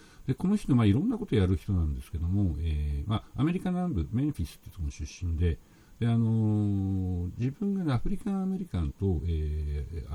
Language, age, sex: Japanese, 60-79, male